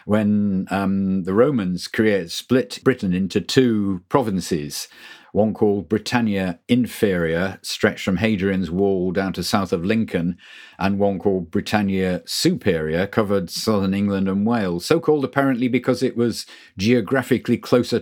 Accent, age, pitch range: British, 50-69, 95-115 Hz